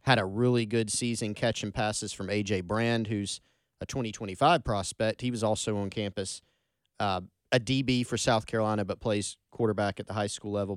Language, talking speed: English, 185 wpm